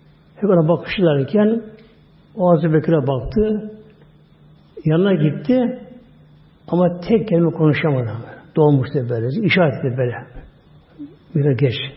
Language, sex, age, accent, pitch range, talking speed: Turkish, male, 60-79, native, 145-175 Hz, 100 wpm